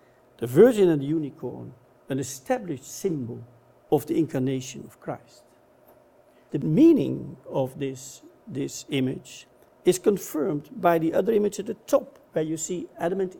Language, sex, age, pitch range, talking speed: English, male, 60-79, 130-170 Hz, 150 wpm